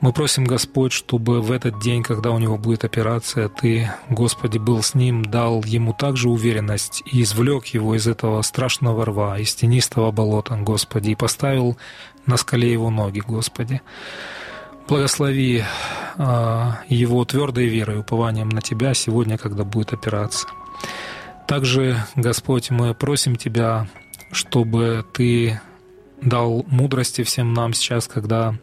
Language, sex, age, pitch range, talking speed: Russian, male, 20-39, 115-130 Hz, 135 wpm